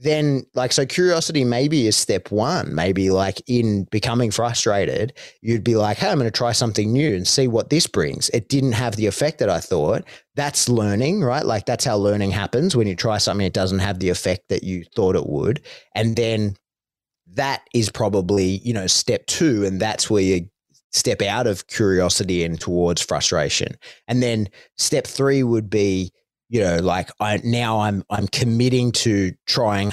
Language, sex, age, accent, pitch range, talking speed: English, male, 30-49, Australian, 100-135 Hz, 190 wpm